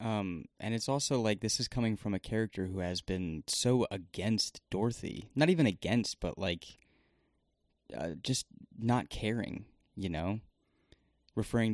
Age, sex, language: 20-39, male, English